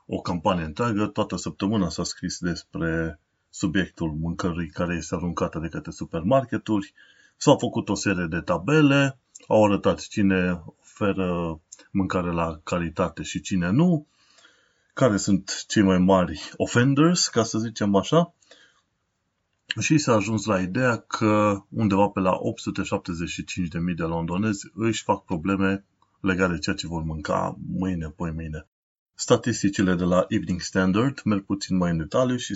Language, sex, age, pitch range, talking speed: Romanian, male, 30-49, 90-110 Hz, 140 wpm